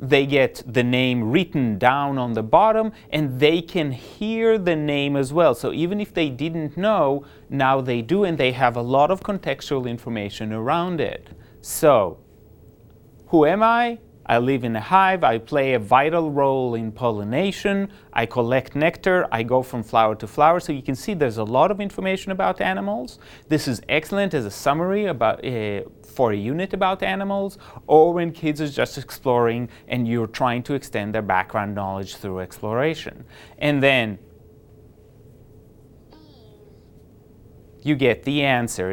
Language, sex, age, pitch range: English, male, 30-49, 120-170 Hz